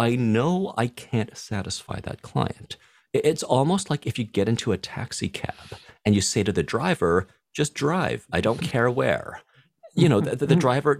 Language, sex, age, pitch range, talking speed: English, male, 40-59, 95-130 Hz, 185 wpm